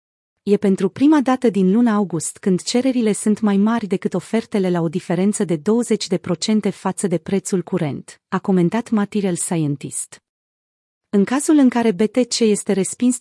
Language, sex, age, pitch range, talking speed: Romanian, female, 30-49, 180-225 Hz, 155 wpm